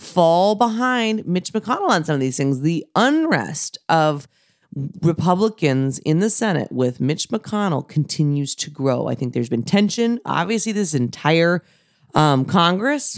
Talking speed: 145 wpm